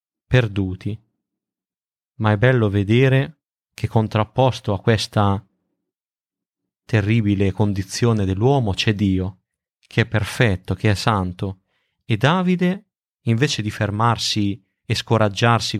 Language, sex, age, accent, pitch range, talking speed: Italian, male, 30-49, native, 100-115 Hz, 105 wpm